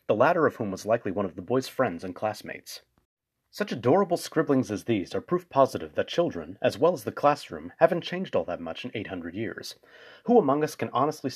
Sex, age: male, 30-49